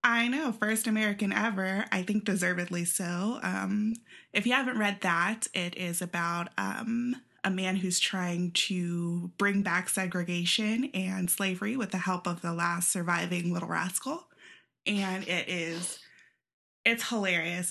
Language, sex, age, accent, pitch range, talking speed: English, female, 20-39, American, 175-210 Hz, 145 wpm